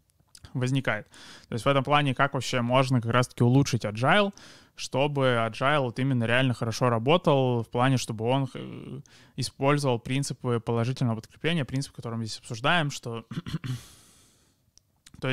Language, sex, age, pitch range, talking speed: Russian, male, 20-39, 120-135 Hz, 135 wpm